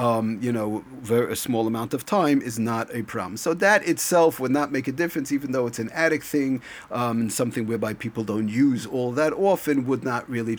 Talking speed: 220 wpm